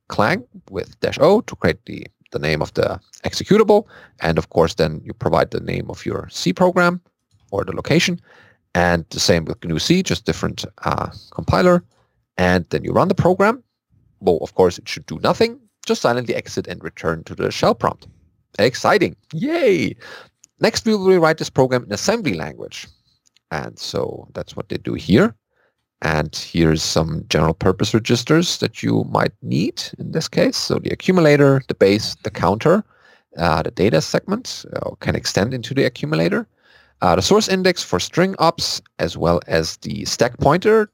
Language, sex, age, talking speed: English, male, 40-59, 175 wpm